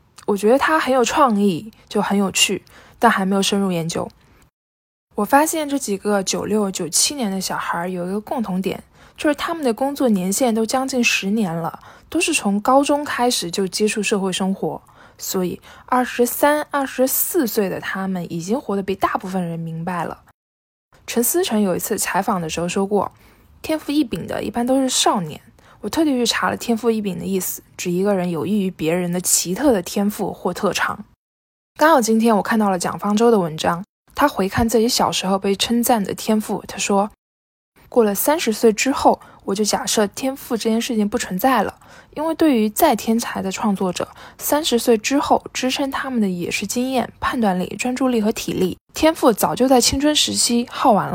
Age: 10-29